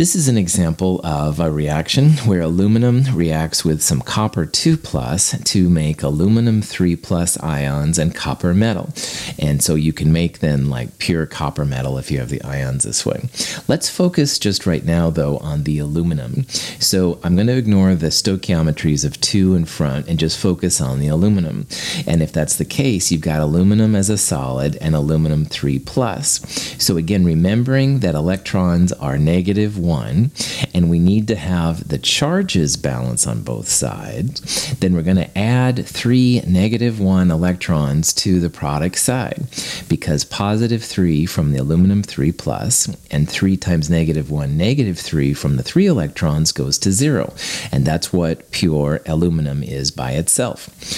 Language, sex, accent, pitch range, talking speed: English, male, American, 80-105 Hz, 165 wpm